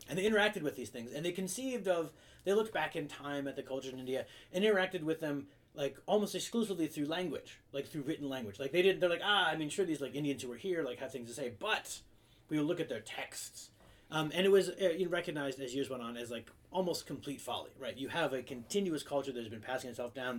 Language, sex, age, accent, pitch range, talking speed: English, male, 30-49, American, 120-175 Hz, 255 wpm